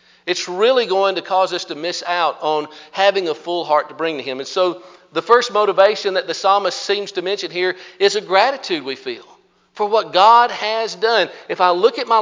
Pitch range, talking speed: 160-225 Hz, 220 wpm